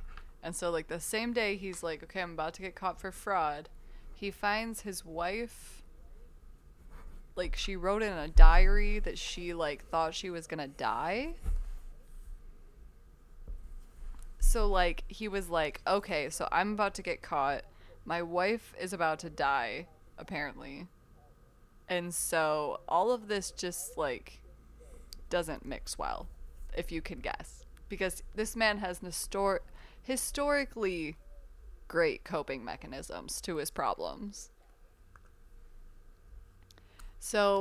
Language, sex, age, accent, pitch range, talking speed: English, female, 20-39, American, 150-205 Hz, 130 wpm